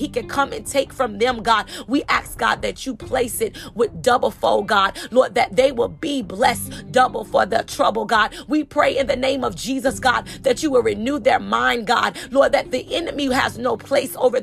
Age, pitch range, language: 30-49, 250-285 Hz, English